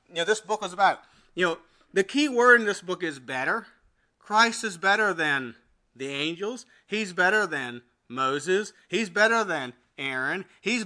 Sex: male